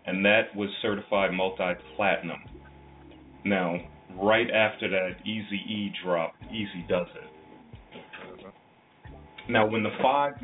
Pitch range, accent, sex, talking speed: 85-105 Hz, American, male, 115 wpm